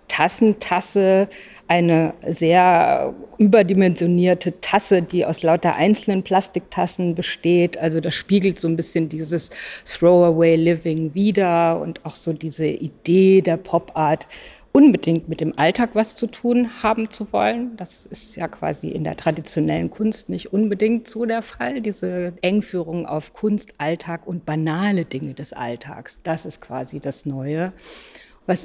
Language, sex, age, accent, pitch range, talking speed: German, female, 50-69, German, 165-205 Hz, 145 wpm